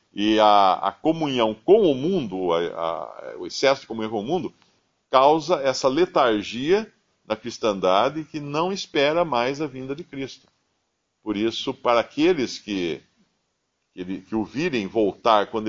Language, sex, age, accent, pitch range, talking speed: Portuguese, male, 50-69, Brazilian, 115-190 Hz, 150 wpm